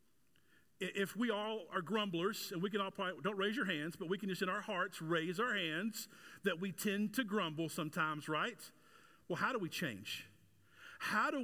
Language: English